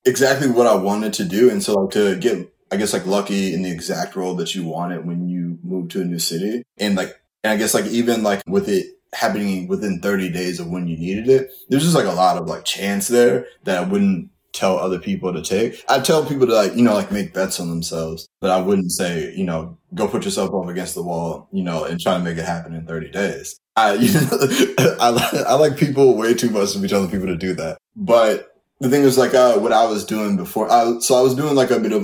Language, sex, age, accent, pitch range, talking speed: English, male, 20-39, American, 85-130 Hz, 260 wpm